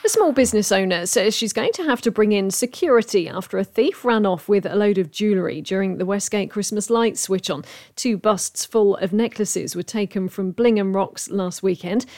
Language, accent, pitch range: English, British, 185-225 Hz